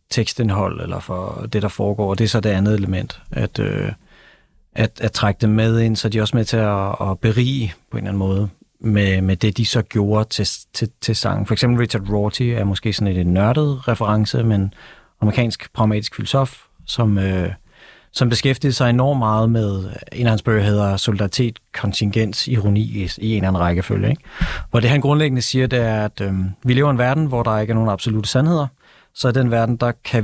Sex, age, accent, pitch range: male, 30-49, native, 105-125 Hz